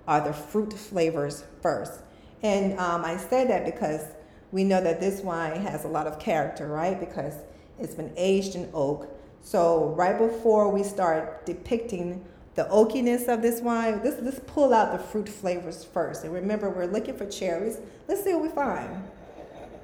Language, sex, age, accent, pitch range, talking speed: English, female, 40-59, American, 175-220 Hz, 175 wpm